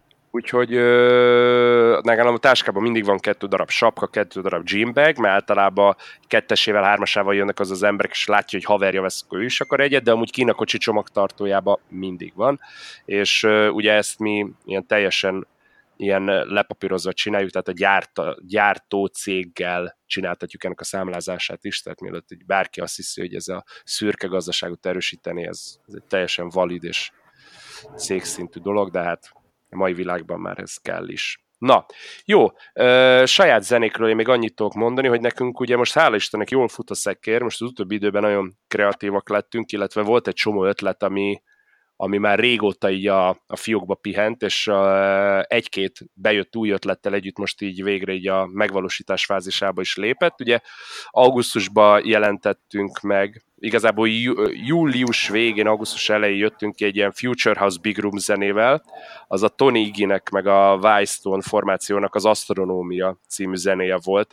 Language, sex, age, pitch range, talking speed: Hungarian, male, 20-39, 95-110 Hz, 160 wpm